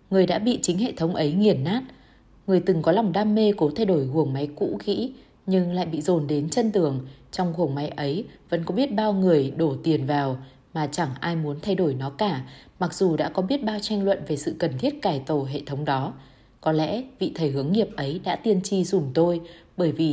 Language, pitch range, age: Vietnamese, 150-205 Hz, 20-39